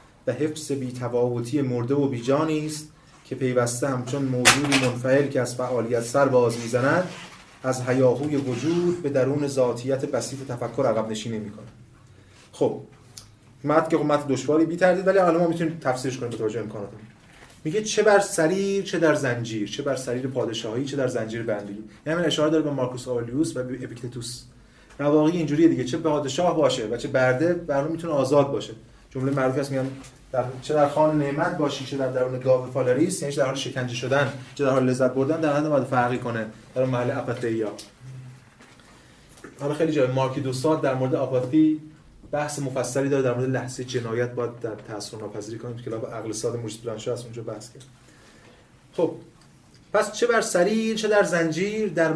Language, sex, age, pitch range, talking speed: Persian, male, 30-49, 120-155 Hz, 180 wpm